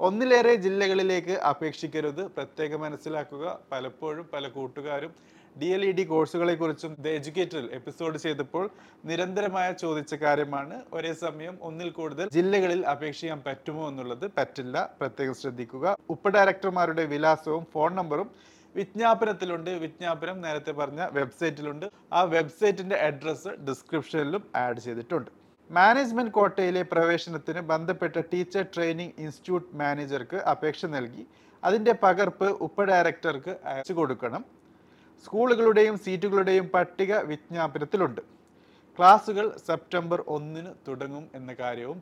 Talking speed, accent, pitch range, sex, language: 100 wpm, native, 150-185 Hz, male, Malayalam